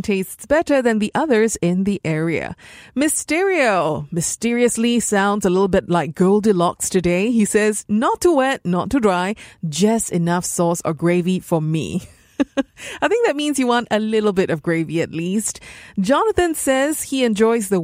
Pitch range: 175-240 Hz